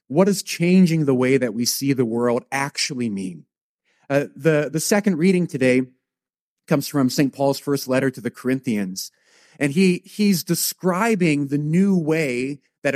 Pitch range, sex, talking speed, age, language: 145-195 Hz, male, 155 wpm, 40-59, English